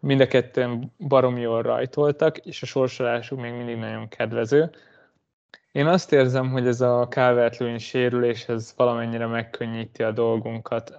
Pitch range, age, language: 115-130 Hz, 20-39, Hungarian